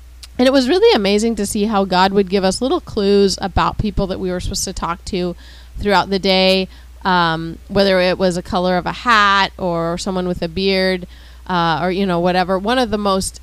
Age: 30-49